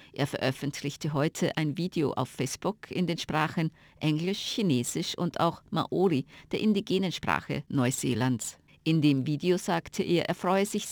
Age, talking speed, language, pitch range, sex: 50-69, 150 wpm, German, 150-185 Hz, female